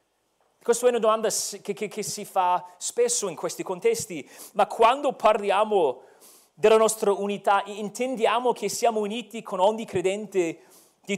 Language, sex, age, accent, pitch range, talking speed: Italian, male, 40-59, native, 185-240 Hz, 145 wpm